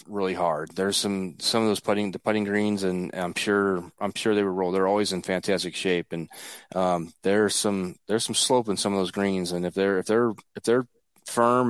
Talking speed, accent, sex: 225 wpm, American, male